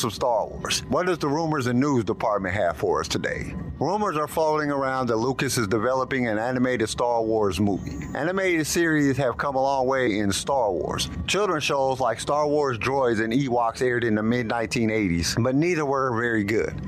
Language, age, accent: English, 50-69, American